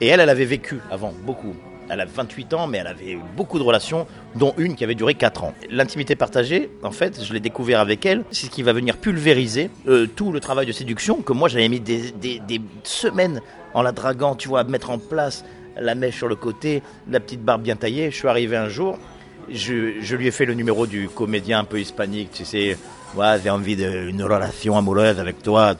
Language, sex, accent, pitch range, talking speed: French, male, French, 110-140 Hz, 235 wpm